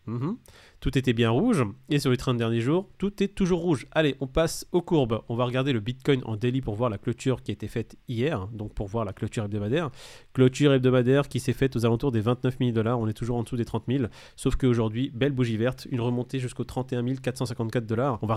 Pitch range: 115-140 Hz